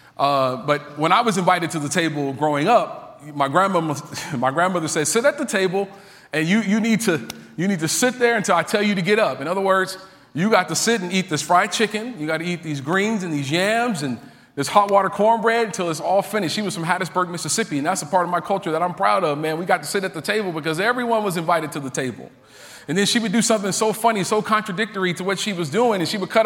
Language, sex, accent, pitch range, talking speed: English, male, American, 150-205 Hz, 265 wpm